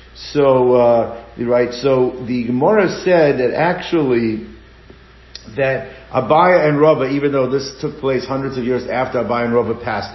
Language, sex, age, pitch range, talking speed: English, male, 50-69, 130-160 Hz, 155 wpm